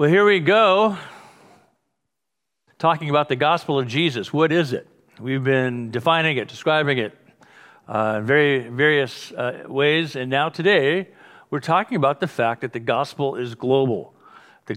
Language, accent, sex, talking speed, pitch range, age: English, American, male, 160 wpm, 125-155 Hz, 60-79